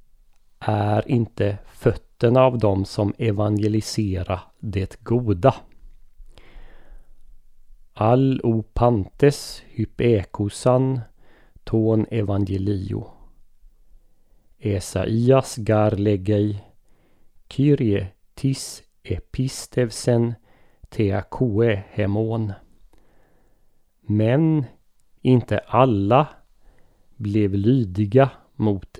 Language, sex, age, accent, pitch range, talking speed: Swedish, male, 30-49, native, 100-120 Hz, 60 wpm